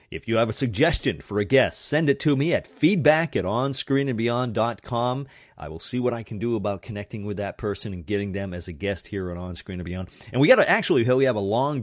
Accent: American